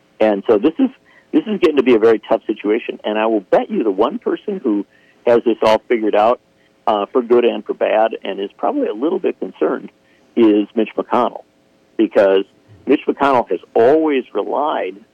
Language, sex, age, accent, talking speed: English, male, 50-69, American, 195 wpm